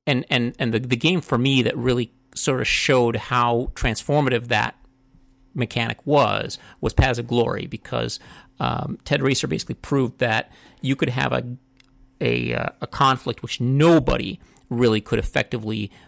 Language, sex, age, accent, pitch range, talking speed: English, male, 40-59, American, 110-130 Hz, 155 wpm